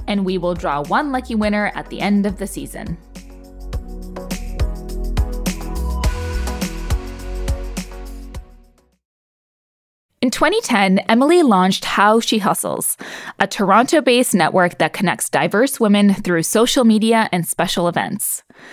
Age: 20-39